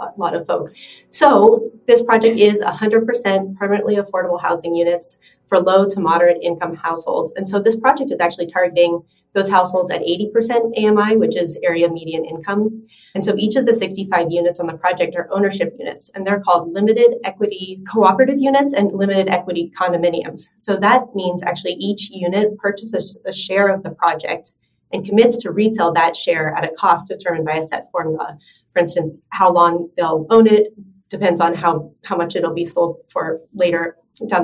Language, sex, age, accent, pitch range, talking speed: English, female, 30-49, American, 170-210 Hz, 180 wpm